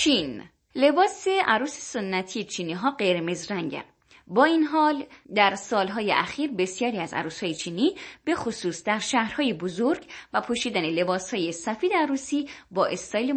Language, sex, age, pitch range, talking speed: Persian, female, 20-39, 180-275 Hz, 140 wpm